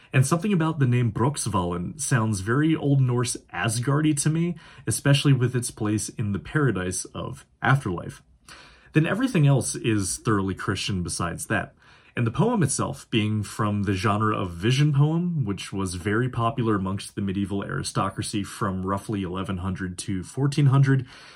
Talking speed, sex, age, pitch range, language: 150 wpm, male, 30-49, 100-135 Hz, English